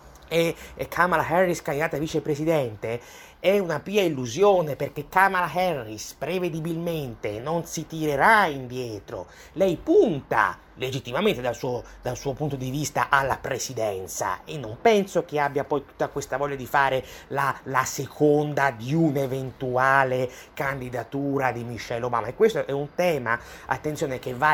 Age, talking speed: 30-49, 140 wpm